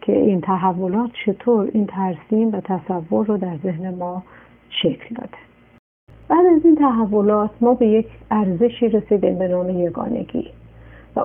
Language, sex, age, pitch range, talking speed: Persian, female, 50-69, 190-230 Hz, 145 wpm